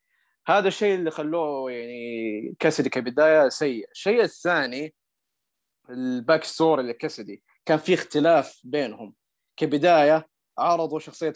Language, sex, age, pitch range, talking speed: Arabic, male, 20-39, 155-220 Hz, 100 wpm